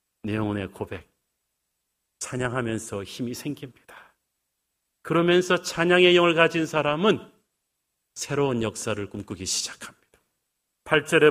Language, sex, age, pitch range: Korean, male, 40-59, 115-155 Hz